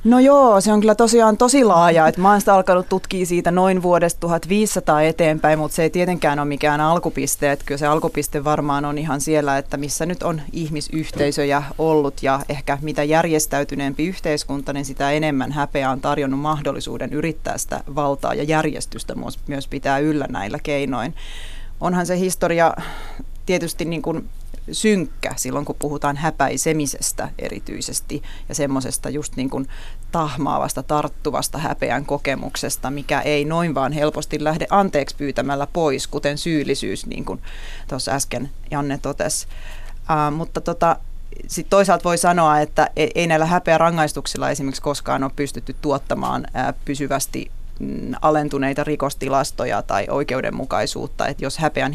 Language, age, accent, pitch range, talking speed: Finnish, 30-49, native, 140-165 Hz, 140 wpm